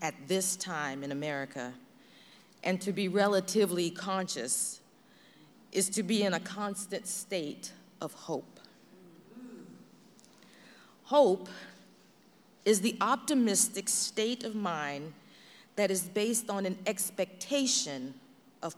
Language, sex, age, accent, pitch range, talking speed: English, female, 40-59, American, 185-240 Hz, 105 wpm